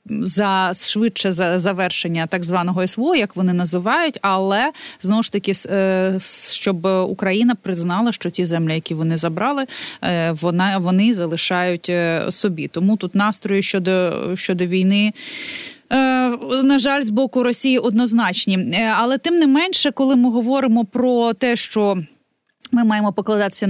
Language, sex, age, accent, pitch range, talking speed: Ukrainian, female, 30-49, native, 180-240 Hz, 130 wpm